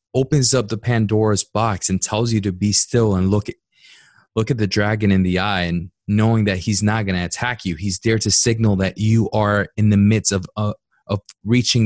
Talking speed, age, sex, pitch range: 225 wpm, 20-39, male, 100-120 Hz